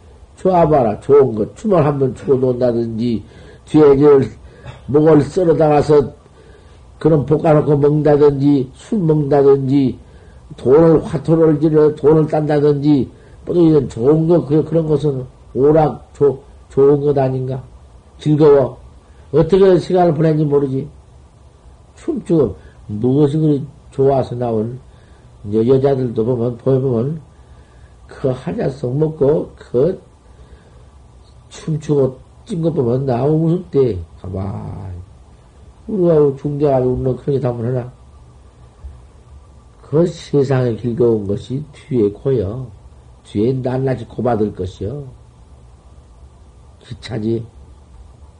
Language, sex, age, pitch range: Korean, male, 50-69, 100-155 Hz